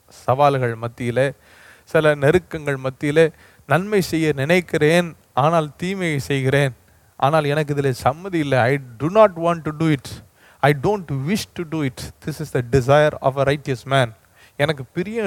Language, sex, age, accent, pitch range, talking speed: Tamil, male, 30-49, native, 115-155 Hz, 155 wpm